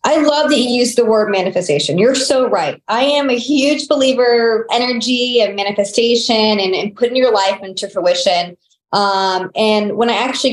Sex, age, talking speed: male, 20-39, 180 wpm